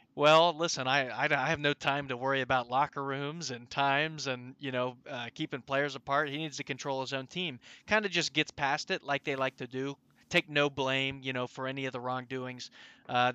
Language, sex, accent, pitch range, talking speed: English, male, American, 135-165 Hz, 230 wpm